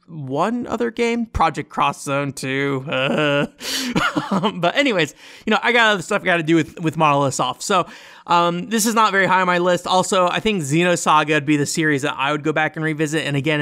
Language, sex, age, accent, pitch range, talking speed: English, male, 30-49, American, 145-210 Hz, 230 wpm